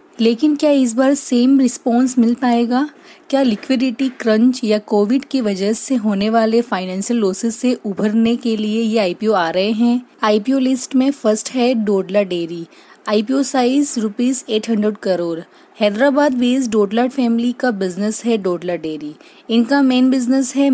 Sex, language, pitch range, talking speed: female, Hindi, 210-250 Hz, 155 wpm